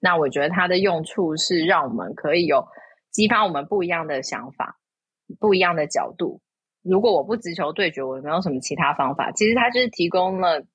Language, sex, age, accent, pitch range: Chinese, female, 20-39, native, 155-200 Hz